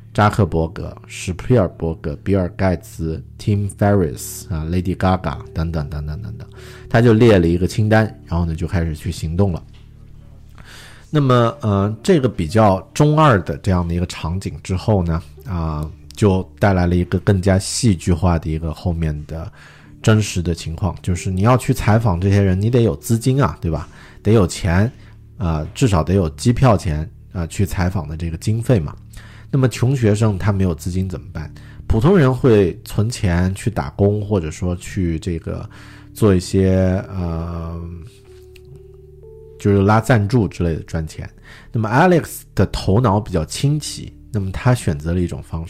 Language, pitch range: Chinese, 85-110 Hz